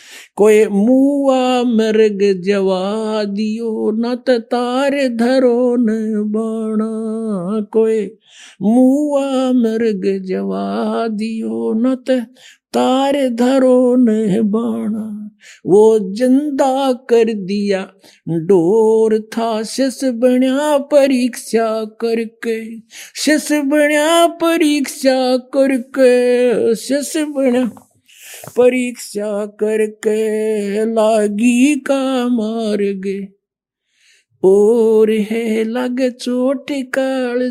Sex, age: male, 50-69